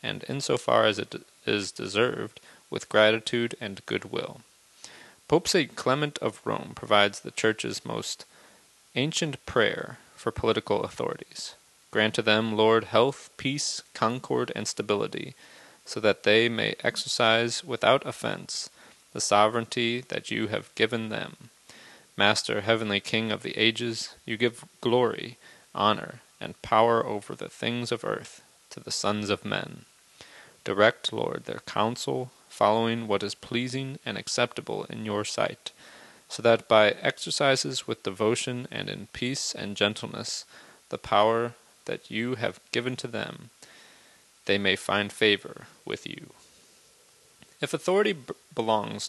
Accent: American